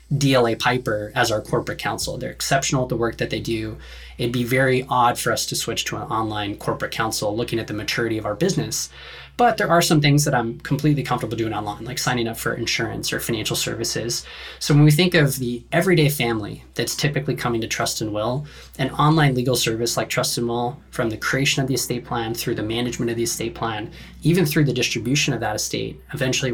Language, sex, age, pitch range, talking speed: English, male, 20-39, 115-145 Hz, 215 wpm